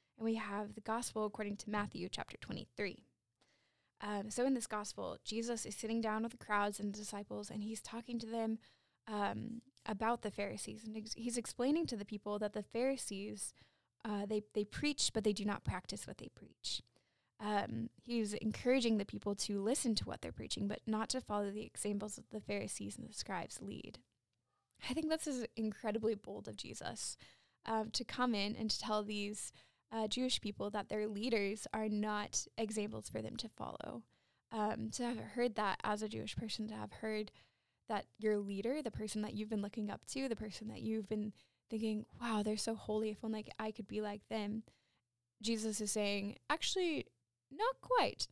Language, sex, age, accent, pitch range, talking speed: English, female, 10-29, American, 205-230 Hz, 195 wpm